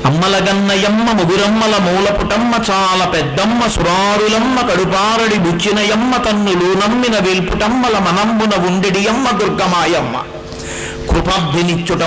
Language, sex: Telugu, male